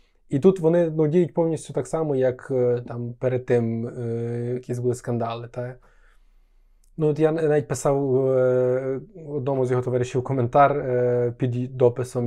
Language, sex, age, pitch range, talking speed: Ukrainian, male, 20-39, 125-160 Hz, 150 wpm